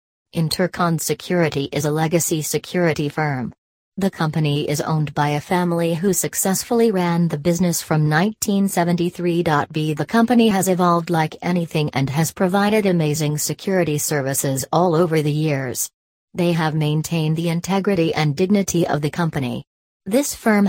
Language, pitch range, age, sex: English, 150-175 Hz, 40-59, female